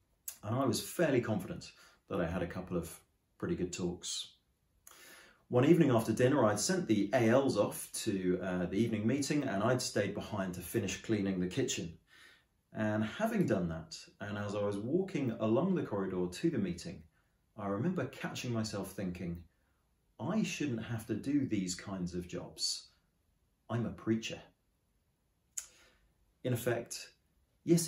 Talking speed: 155 wpm